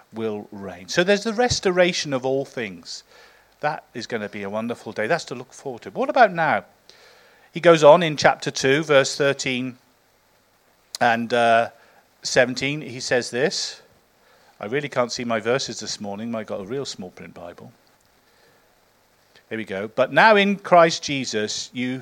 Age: 40-59